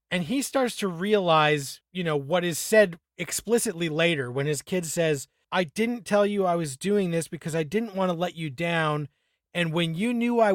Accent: American